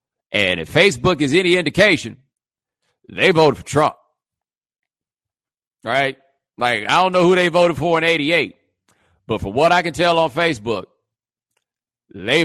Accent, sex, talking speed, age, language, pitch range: American, male, 145 wpm, 40-59, English, 115-165 Hz